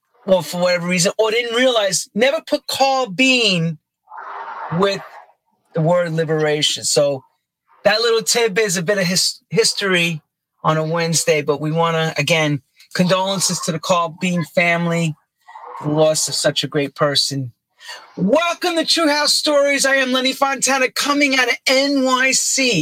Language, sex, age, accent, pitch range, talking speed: English, male, 40-59, American, 170-260 Hz, 155 wpm